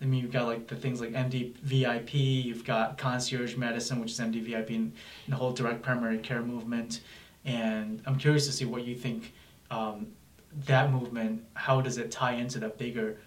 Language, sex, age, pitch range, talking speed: English, male, 20-39, 115-135 Hz, 185 wpm